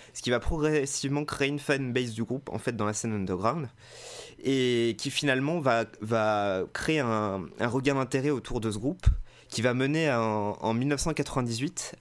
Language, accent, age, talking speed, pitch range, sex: French, French, 20-39, 170 wpm, 115-140 Hz, male